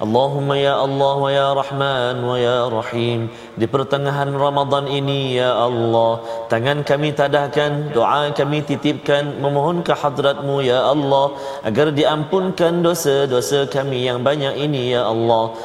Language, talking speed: Malayalam, 90 wpm